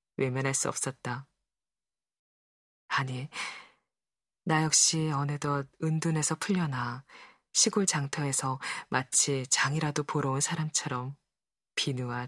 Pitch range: 135-165 Hz